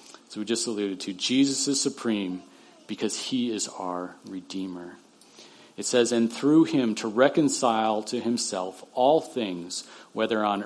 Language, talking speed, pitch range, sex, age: English, 145 wpm, 105-135 Hz, male, 40-59